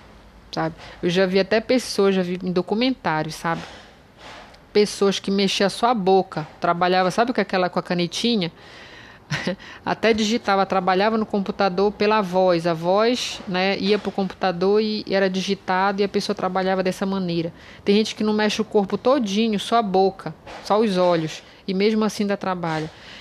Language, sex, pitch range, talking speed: Portuguese, female, 175-210 Hz, 170 wpm